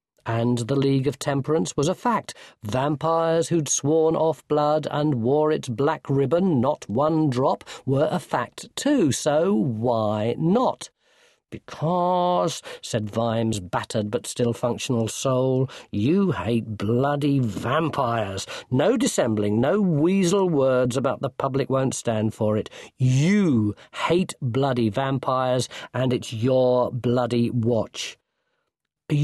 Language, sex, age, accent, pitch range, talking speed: English, male, 50-69, British, 115-155 Hz, 125 wpm